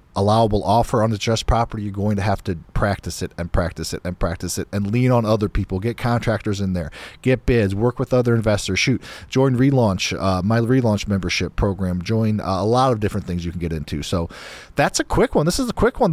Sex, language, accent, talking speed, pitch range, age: male, English, American, 235 wpm, 95-135 Hz, 40-59